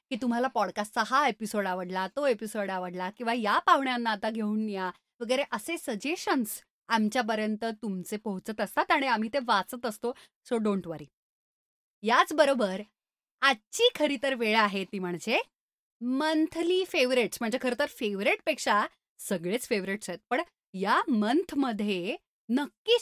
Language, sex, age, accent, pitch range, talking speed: Marathi, female, 30-49, native, 210-290 Hz, 130 wpm